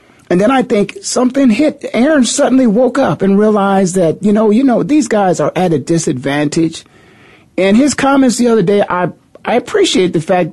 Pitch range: 155-220 Hz